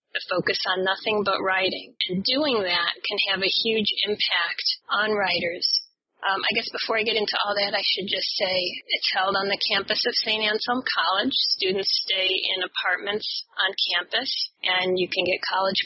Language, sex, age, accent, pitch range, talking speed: English, female, 30-49, American, 190-220 Hz, 180 wpm